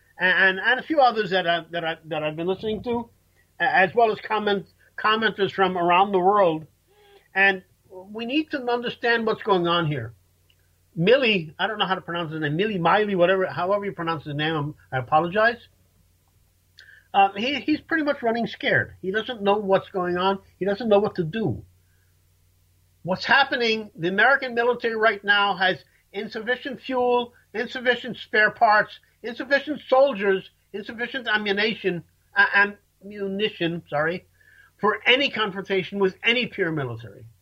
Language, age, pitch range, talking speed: English, 50-69, 165-230 Hz, 155 wpm